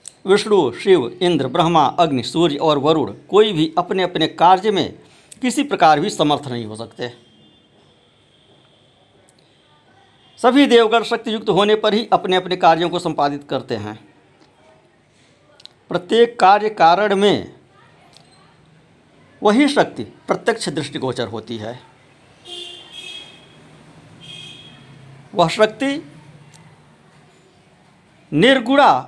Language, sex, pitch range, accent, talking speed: Hindi, male, 150-205 Hz, native, 100 wpm